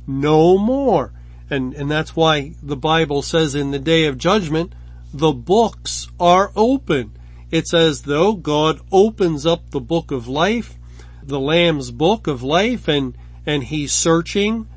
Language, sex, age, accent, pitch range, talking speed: English, male, 50-69, American, 135-170 Hz, 150 wpm